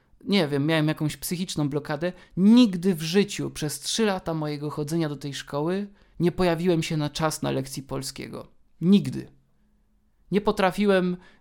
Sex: male